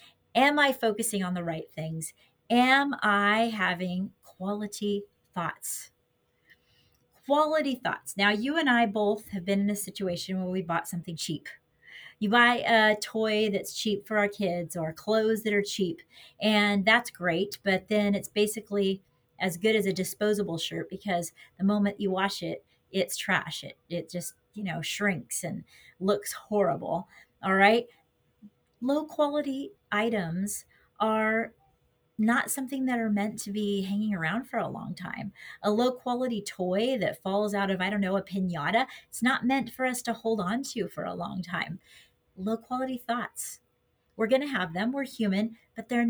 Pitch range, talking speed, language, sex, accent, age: 195-240 Hz, 170 wpm, English, female, American, 30-49